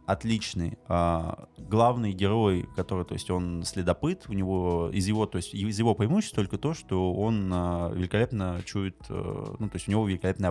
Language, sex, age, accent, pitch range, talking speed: Russian, male, 20-39, native, 90-110 Hz, 170 wpm